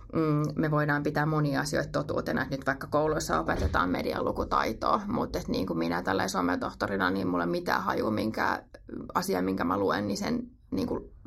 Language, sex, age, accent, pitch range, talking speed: Finnish, female, 30-49, native, 150-190 Hz, 165 wpm